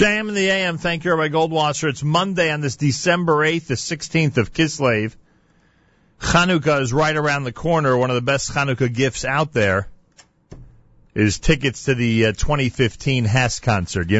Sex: male